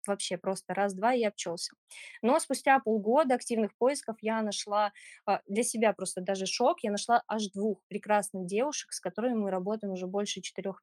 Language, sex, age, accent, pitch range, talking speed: Russian, female, 20-39, native, 195-225 Hz, 165 wpm